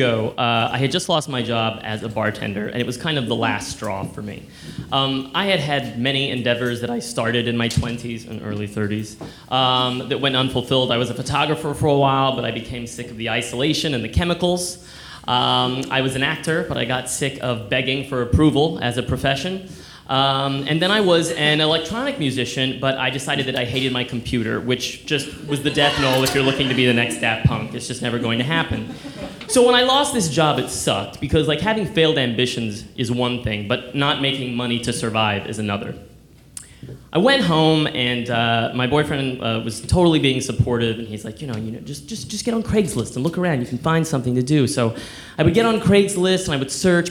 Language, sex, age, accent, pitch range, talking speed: English, male, 20-39, American, 120-150 Hz, 225 wpm